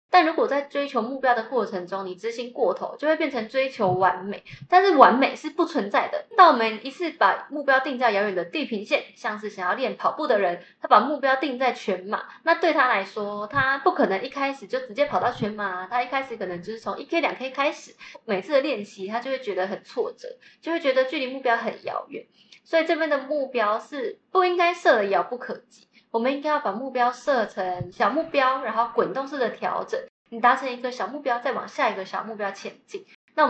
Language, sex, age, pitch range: Chinese, female, 20-39, 215-305 Hz